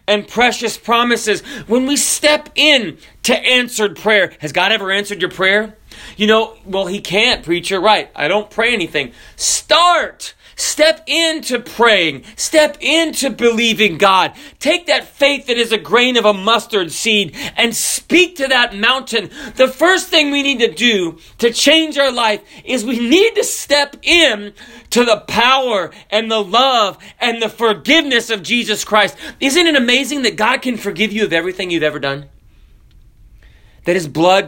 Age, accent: 40-59, American